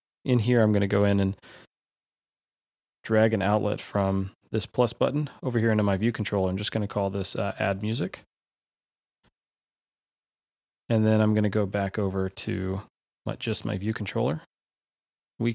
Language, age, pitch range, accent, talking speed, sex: English, 30-49, 100-120 Hz, American, 160 wpm, male